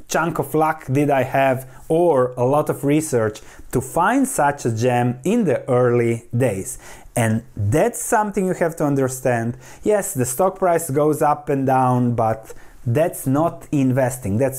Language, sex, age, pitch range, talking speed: English, male, 30-49, 130-185 Hz, 165 wpm